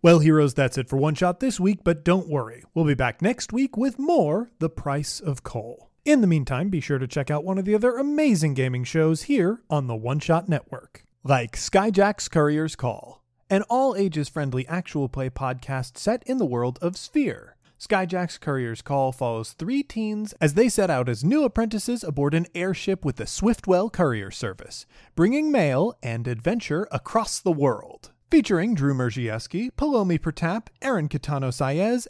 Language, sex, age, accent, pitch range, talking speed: English, male, 30-49, American, 135-200 Hz, 175 wpm